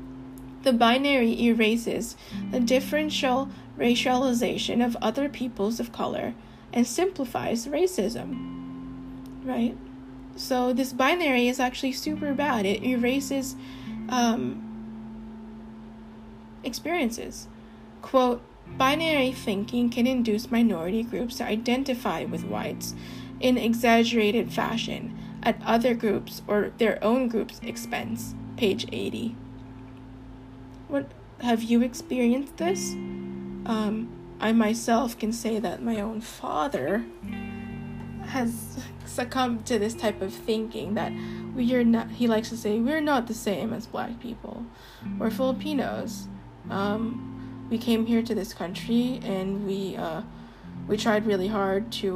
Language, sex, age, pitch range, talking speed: English, female, 10-29, 185-245 Hz, 115 wpm